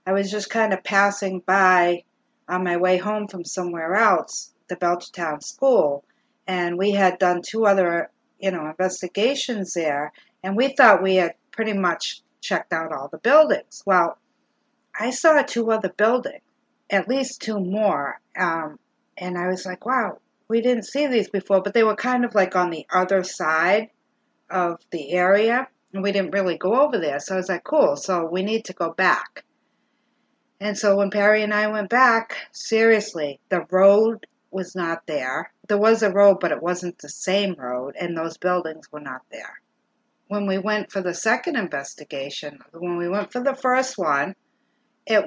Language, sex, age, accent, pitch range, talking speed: English, female, 60-79, American, 175-220 Hz, 180 wpm